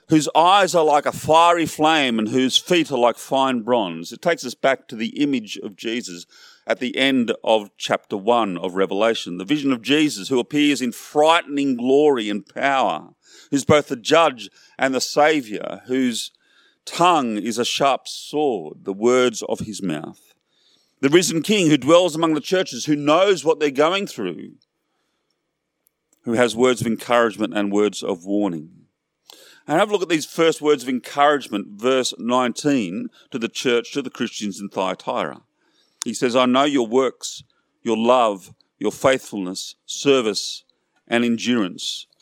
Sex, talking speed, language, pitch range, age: male, 165 wpm, English, 115-150 Hz, 40-59